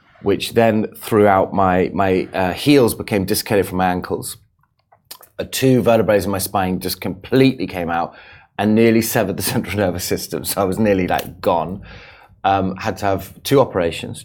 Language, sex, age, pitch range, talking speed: Arabic, male, 30-49, 95-120 Hz, 175 wpm